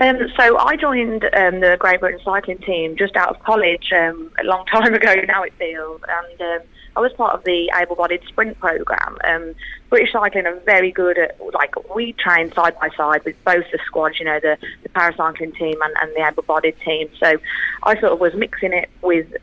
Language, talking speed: English, 205 wpm